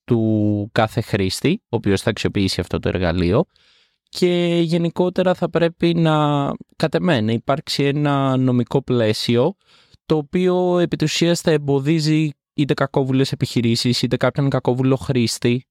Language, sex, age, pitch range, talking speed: Greek, male, 20-39, 110-155 Hz, 125 wpm